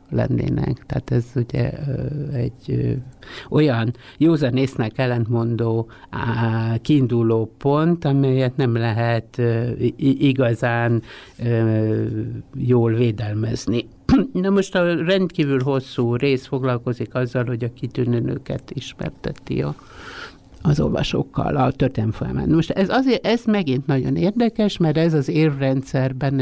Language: Hungarian